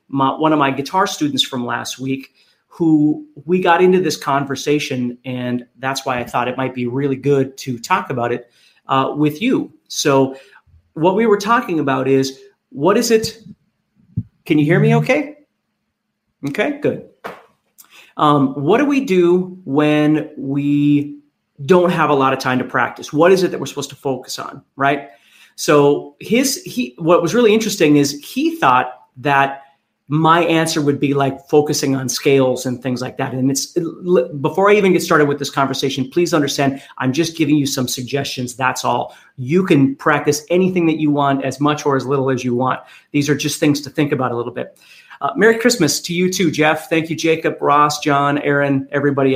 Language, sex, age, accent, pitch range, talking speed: English, male, 30-49, American, 135-165 Hz, 190 wpm